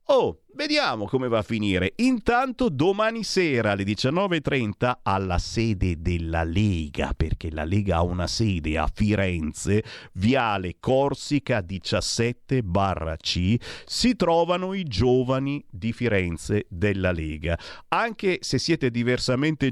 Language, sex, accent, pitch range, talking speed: Italian, male, native, 100-155 Hz, 115 wpm